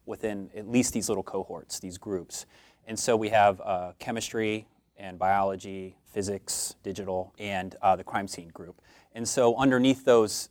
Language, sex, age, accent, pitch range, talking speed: English, male, 30-49, American, 95-105 Hz, 160 wpm